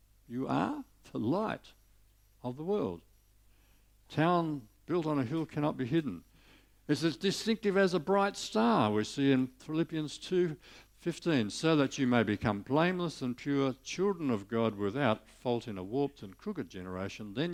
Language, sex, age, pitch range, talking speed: English, male, 60-79, 100-140 Hz, 160 wpm